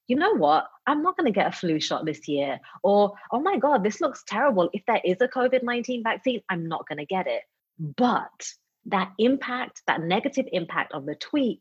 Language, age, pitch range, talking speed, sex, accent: English, 30-49, 170-240 Hz, 210 wpm, female, British